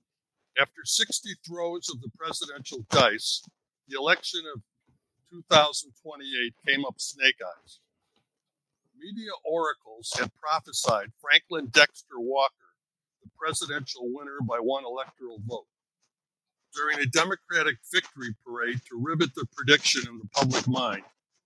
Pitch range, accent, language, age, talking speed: 125-170 Hz, American, English, 60-79, 115 wpm